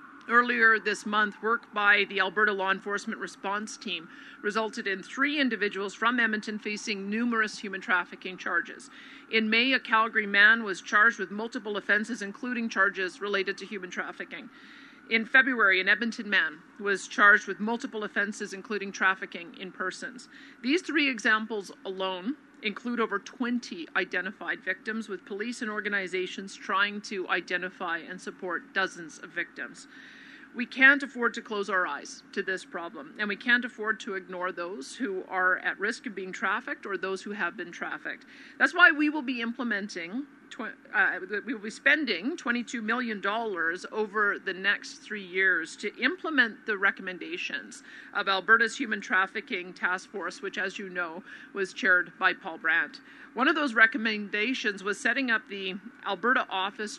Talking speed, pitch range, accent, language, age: 160 wpm, 195-250 Hz, American, English, 50-69